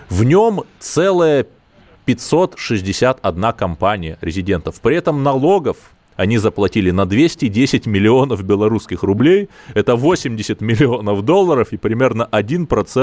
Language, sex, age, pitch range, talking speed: Russian, male, 30-49, 95-125 Hz, 100 wpm